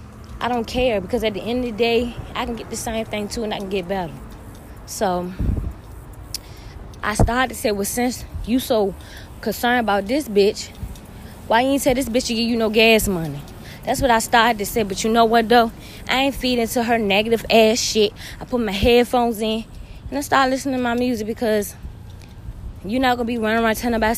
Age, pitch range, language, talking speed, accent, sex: 20-39, 215-250 Hz, English, 220 wpm, American, female